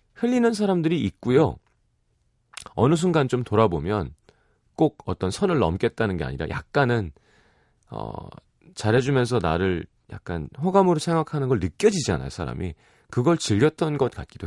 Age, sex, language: 30-49, male, Korean